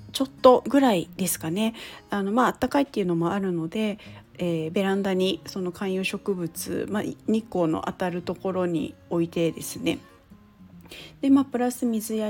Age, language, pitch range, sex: 40-59, Japanese, 185-265 Hz, female